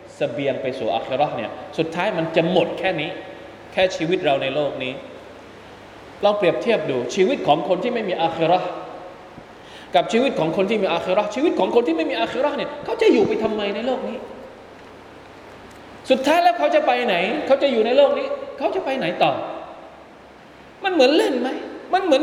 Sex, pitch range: male, 170-280 Hz